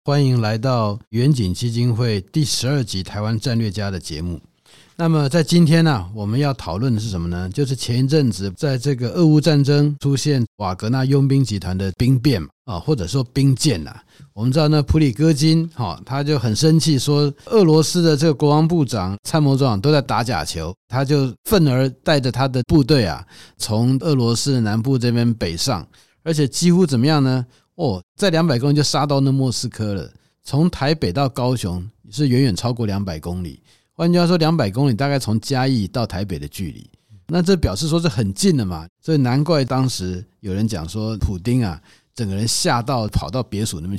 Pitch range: 105-145 Hz